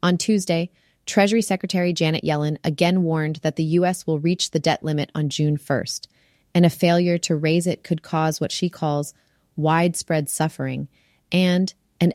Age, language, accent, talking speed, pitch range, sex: 30-49, English, American, 170 wpm, 150-175 Hz, female